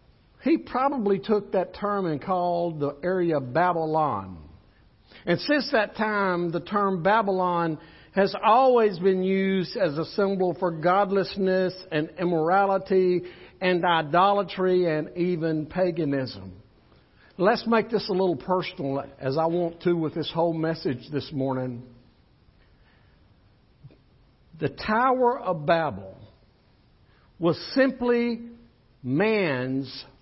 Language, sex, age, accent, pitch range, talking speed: English, male, 60-79, American, 135-195 Hz, 115 wpm